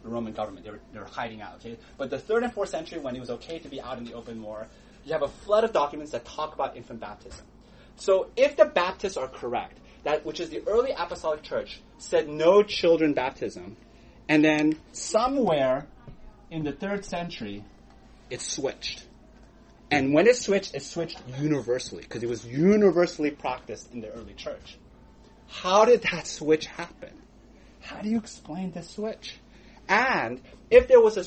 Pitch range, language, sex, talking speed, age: 145-215 Hz, English, male, 180 wpm, 30-49